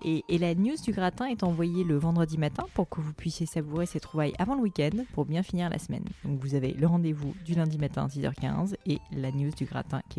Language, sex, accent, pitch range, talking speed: French, female, French, 140-175 Hz, 245 wpm